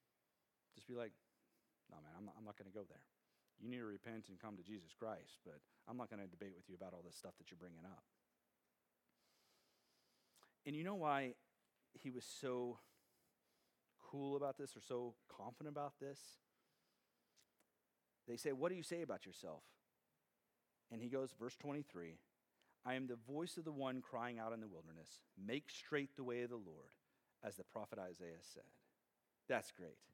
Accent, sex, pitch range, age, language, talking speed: American, male, 110-145 Hz, 40-59, English, 185 wpm